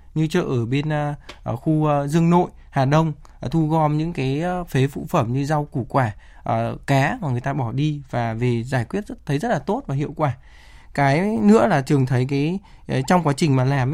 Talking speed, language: 210 wpm, Vietnamese